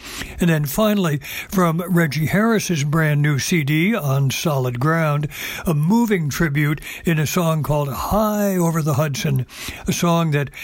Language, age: English, 60-79